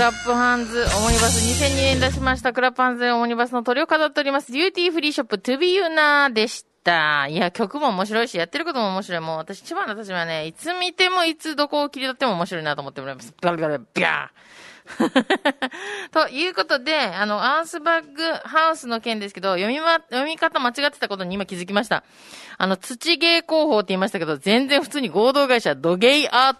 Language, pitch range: Japanese, 200-290 Hz